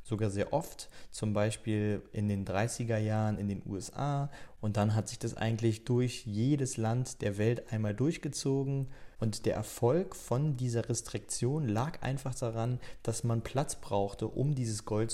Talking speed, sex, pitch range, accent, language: 165 wpm, male, 110-130 Hz, German, German